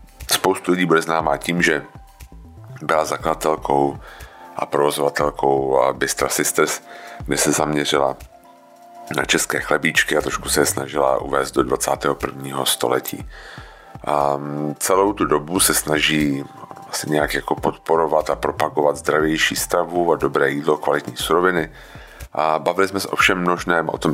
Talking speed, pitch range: 135 wpm, 75-90 Hz